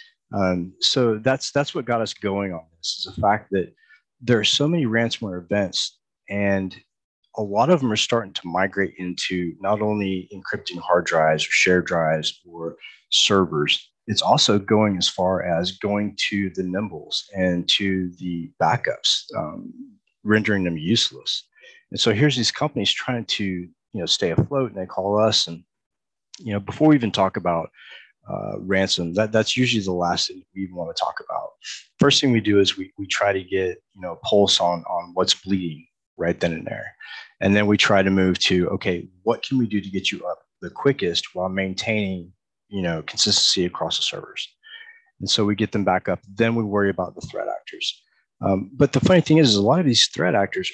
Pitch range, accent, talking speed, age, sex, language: 90-115 Hz, American, 200 wpm, 30-49, male, English